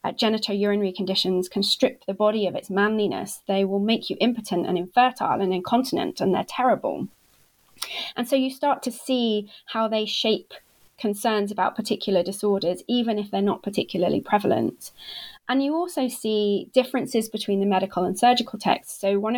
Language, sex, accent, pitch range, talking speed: English, female, British, 195-235 Hz, 165 wpm